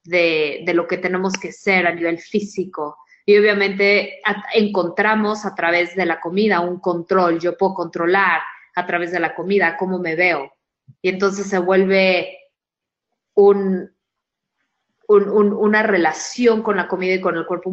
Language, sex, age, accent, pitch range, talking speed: Spanish, female, 20-39, Mexican, 175-205 Hz, 150 wpm